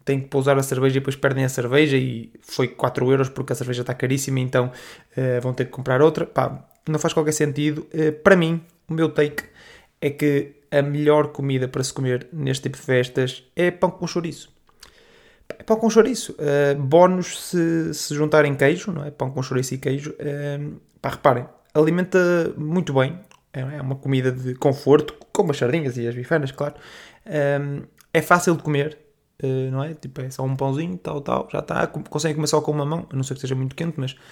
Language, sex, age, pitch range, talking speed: Portuguese, male, 20-39, 135-160 Hz, 205 wpm